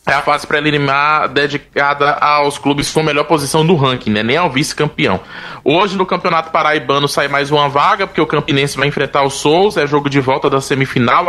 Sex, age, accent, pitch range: male, 20-39, Brazilian, 135-165 Hz